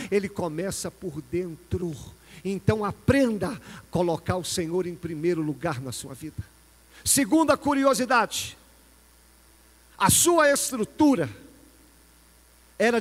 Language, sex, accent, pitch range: Portuguese, male, Brazilian, 175-235 Hz